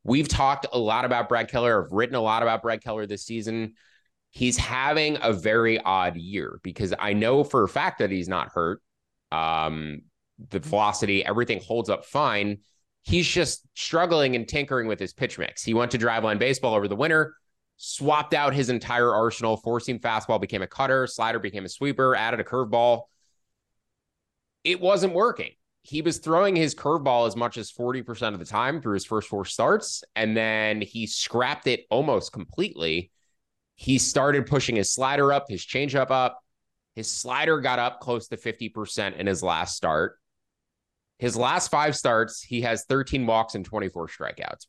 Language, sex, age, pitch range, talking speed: English, male, 20-39, 100-130 Hz, 180 wpm